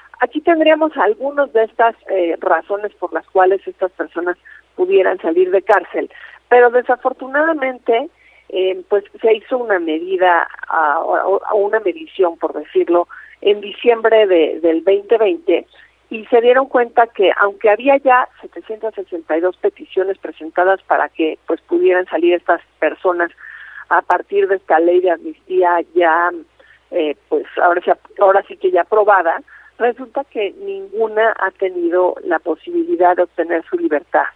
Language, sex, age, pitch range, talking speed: Spanish, female, 50-69, 175-240 Hz, 140 wpm